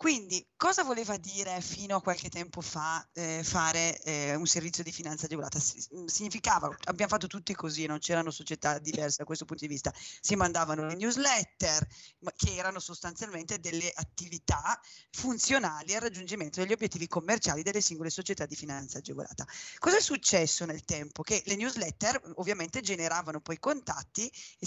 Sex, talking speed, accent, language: female, 160 wpm, native, Italian